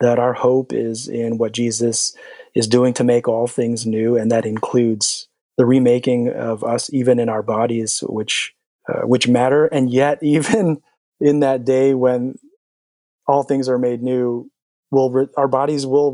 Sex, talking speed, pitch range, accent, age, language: male, 170 wpm, 120-140 Hz, American, 30-49, English